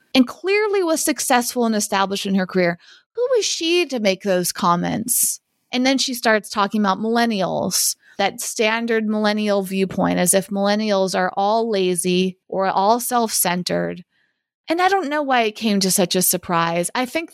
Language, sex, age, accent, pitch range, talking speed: English, female, 20-39, American, 195-265 Hz, 175 wpm